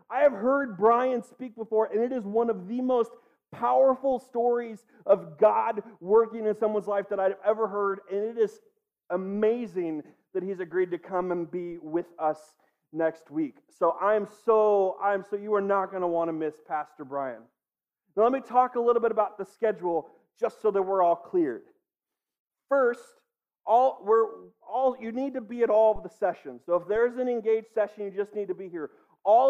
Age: 40-59